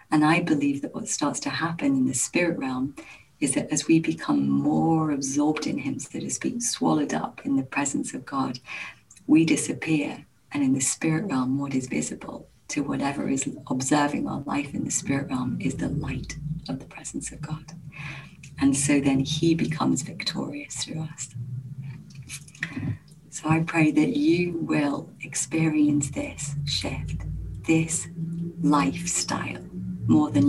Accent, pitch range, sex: British, 130-160 Hz, female